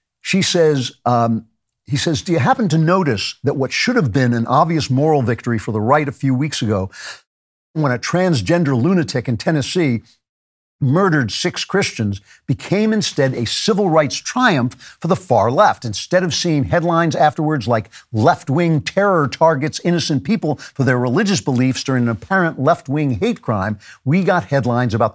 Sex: male